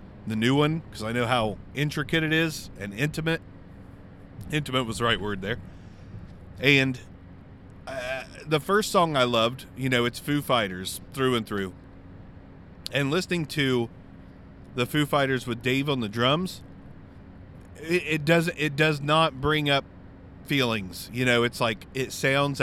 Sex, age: male, 30-49